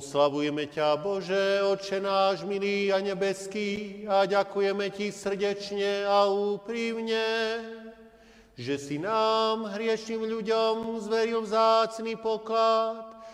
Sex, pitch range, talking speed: male, 200-230 Hz, 100 wpm